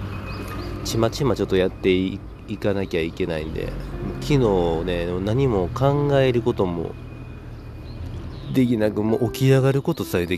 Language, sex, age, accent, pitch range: Japanese, male, 40-59, native, 80-100 Hz